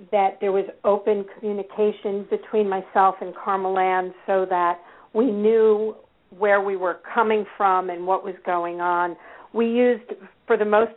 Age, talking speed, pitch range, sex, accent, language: 50-69, 155 wpm, 190-220 Hz, female, American, English